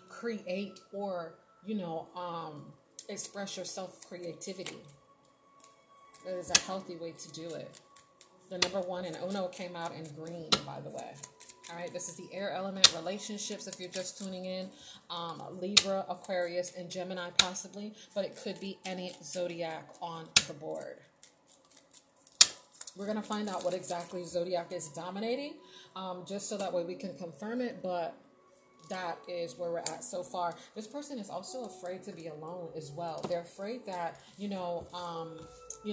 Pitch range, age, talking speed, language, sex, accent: 170-195 Hz, 30-49, 165 wpm, English, female, American